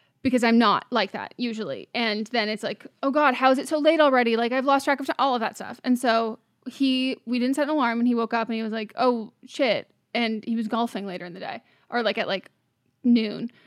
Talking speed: 260 wpm